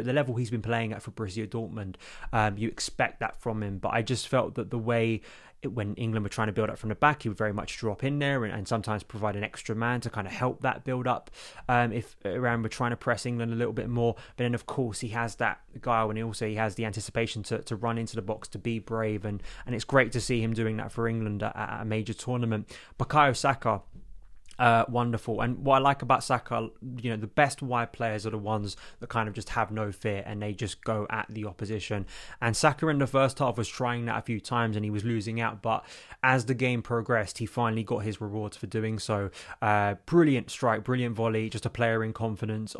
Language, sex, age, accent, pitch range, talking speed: English, male, 20-39, British, 110-120 Hz, 250 wpm